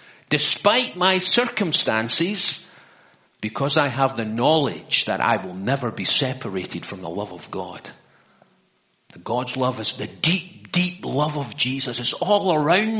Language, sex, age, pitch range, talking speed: English, male, 50-69, 110-165 Hz, 145 wpm